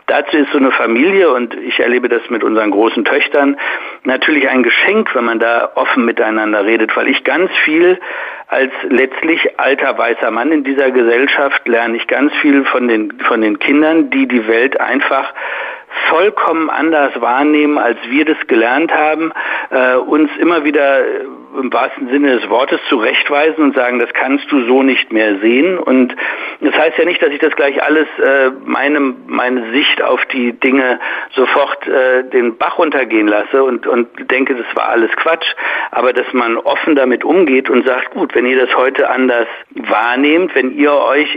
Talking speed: 175 wpm